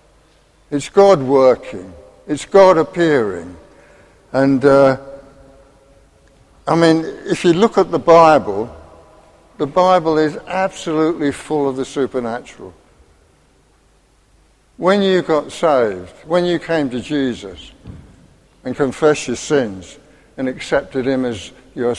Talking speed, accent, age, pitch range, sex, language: 115 wpm, British, 60-79, 135-180 Hz, male, English